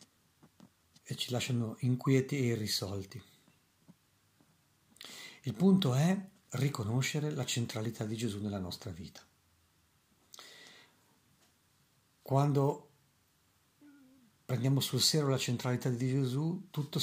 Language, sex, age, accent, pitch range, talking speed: Italian, male, 50-69, native, 105-145 Hz, 90 wpm